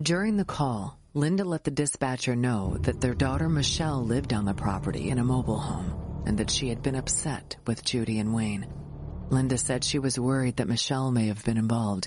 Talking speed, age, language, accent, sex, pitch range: 205 wpm, 40-59, English, American, female, 105-135 Hz